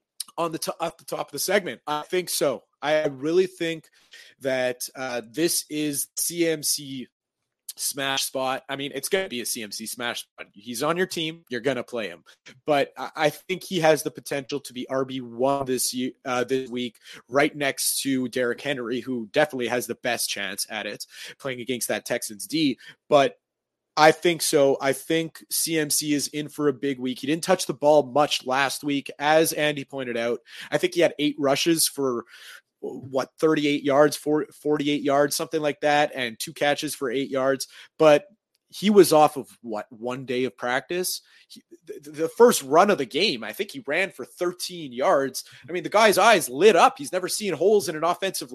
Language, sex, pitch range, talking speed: English, male, 130-165 Hz, 200 wpm